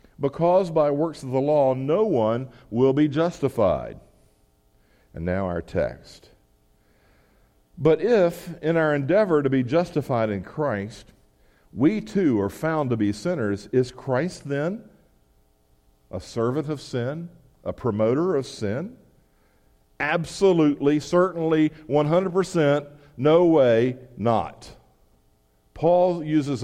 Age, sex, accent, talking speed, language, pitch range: 50-69, male, American, 115 wpm, English, 105-155 Hz